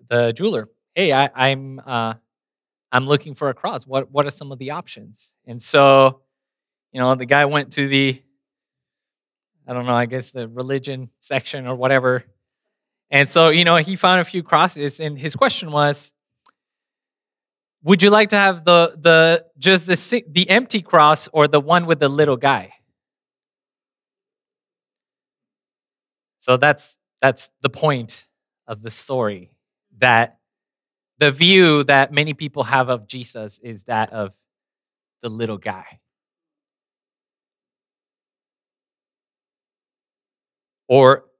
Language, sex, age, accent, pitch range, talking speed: English, male, 20-39, American, 125-155 Hz, 135 wpm